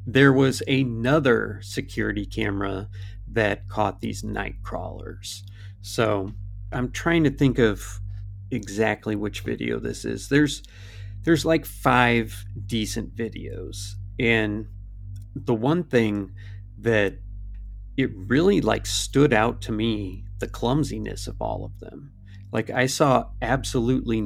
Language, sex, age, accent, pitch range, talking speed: English, male, 40-59, American, 100-120 Hz, 120 wpm